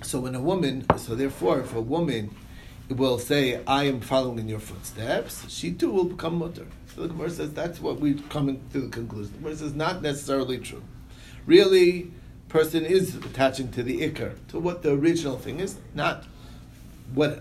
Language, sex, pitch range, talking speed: English, male, 125-170 Hz, 185 wpm